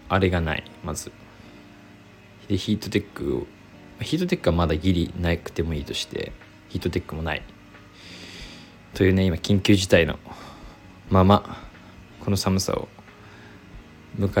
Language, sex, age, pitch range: Japanese, male, 20-39, 95-110 Hz